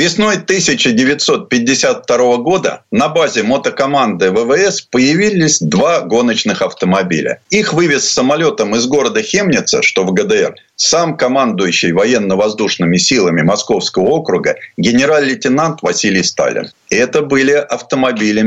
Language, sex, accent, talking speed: Russian, male, native, 105 wpm